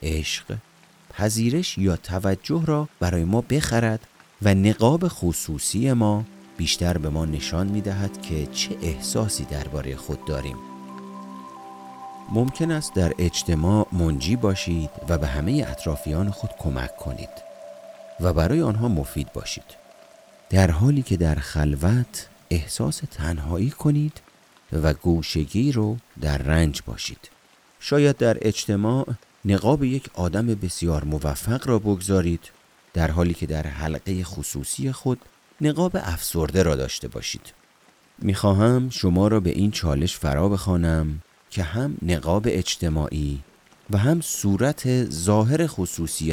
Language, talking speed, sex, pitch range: Persian, 125 wpm, male, 75-110 Hz